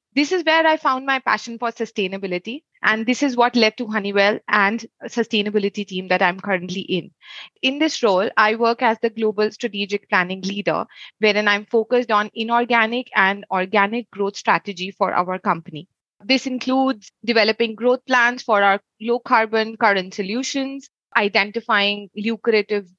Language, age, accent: English, 20-39, Indian